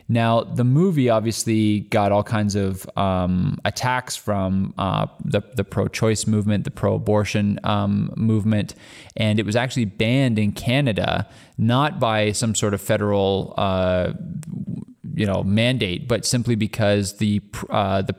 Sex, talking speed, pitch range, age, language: male, 140 wpm, 100-120 Hz, 20-39, English